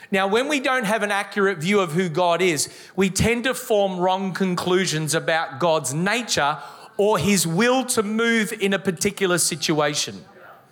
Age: 40-59